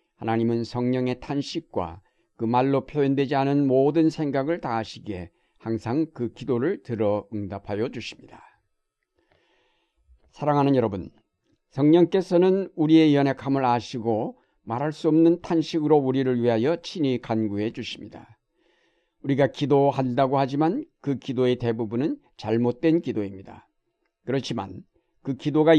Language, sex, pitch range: Korean, male, 115-150 Hz